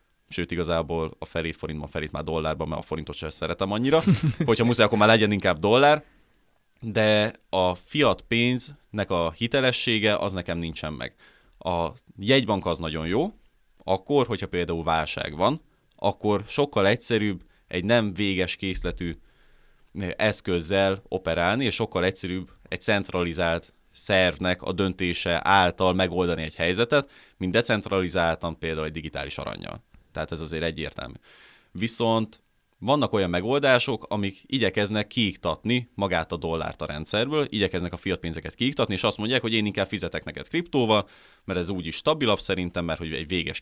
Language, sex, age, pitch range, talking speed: Hungarian, male, 20-39, 85-105 Hz, 150 wpm